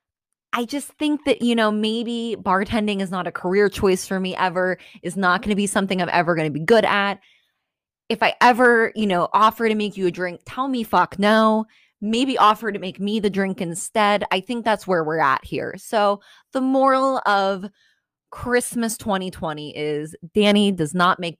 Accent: American